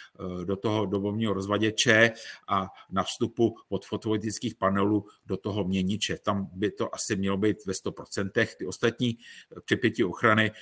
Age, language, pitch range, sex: 50-69, Czech, 100-120 Hz, male